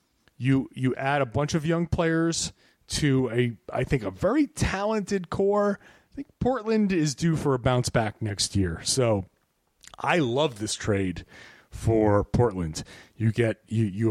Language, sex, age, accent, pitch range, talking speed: English, male, 30-49, American, 110-160 Hz, 160 wpm